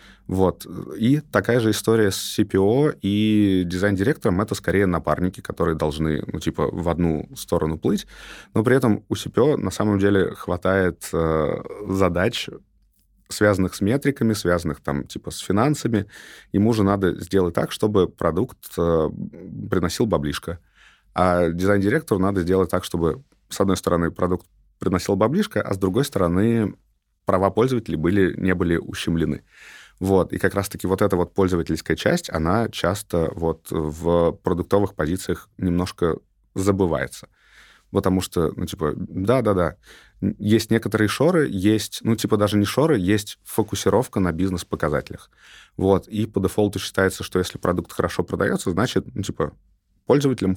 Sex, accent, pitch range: male, native, 85-105 Hz